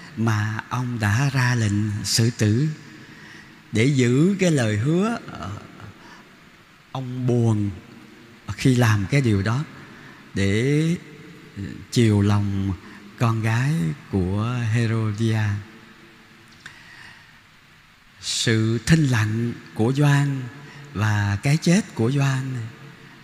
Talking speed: 95 wpm